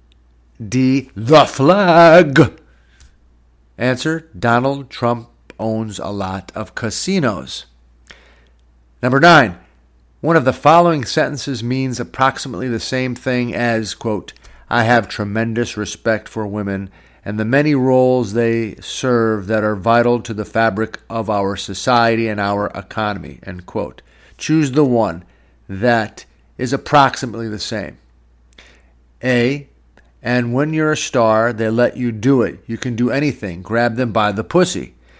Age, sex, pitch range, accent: 50-69, male, 95-130 Hz, American